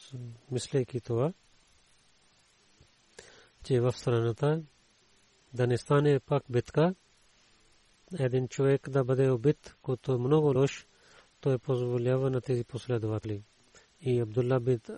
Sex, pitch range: male, 120-140 Hz